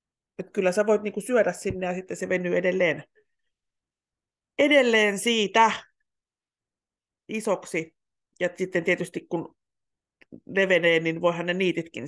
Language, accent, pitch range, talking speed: Finnish, native, 175-295 Hz, 120 wpm